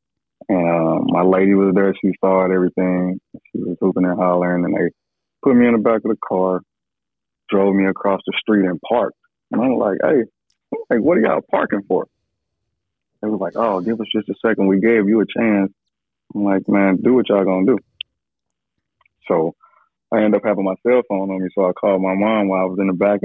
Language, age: English, 20-39